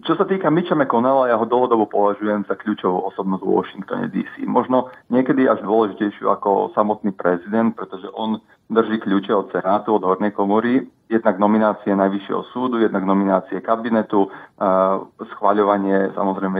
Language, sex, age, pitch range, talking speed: Slovak, male, 40-59, 100-120 Hz, 150 wpm